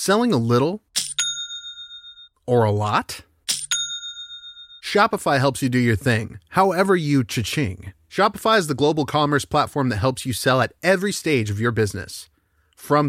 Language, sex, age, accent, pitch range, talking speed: English, male, 30-49, American, 125-180 Hz, 145 wpm